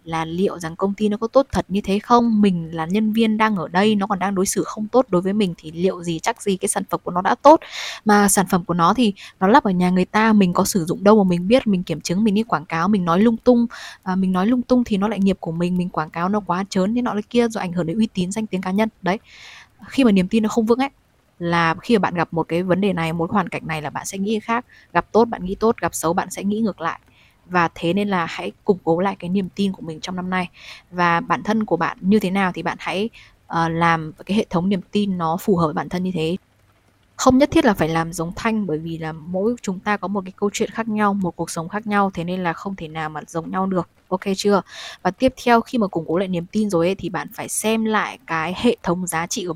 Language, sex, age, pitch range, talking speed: Vietnamese, female, 20-39, 170-210 Hz, 295 wpm